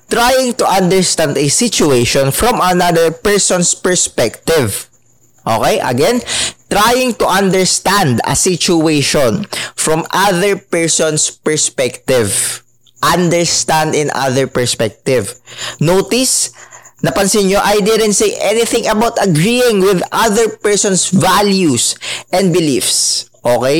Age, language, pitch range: 20-39, English, 135-200 Hz